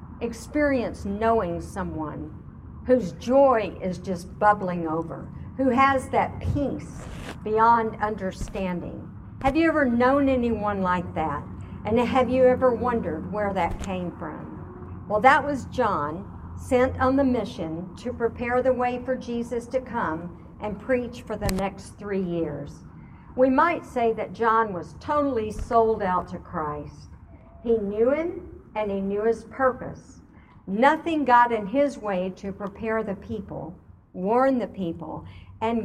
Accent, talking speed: American, 145 wpm